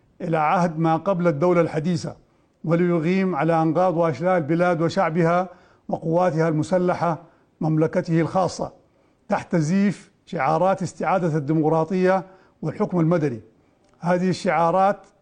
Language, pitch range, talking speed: English, 165-185 Hz, 100 wpm